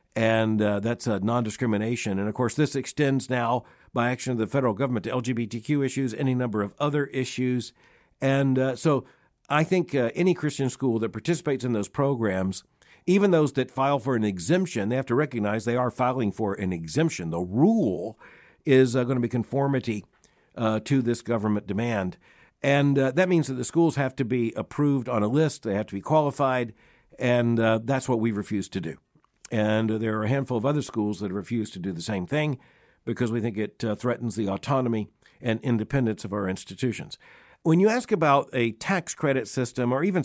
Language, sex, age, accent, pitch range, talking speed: English, male, 60-79, American, 110-140 Hz, 200 wpm